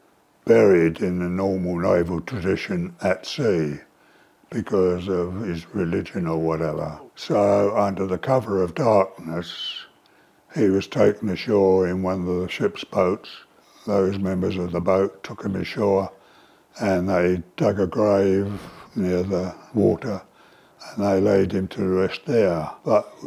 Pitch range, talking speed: 90-95 Hz, 140 wpm